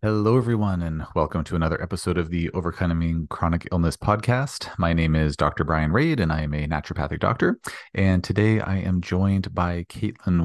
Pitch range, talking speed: 85-100 Hz, 185 wpm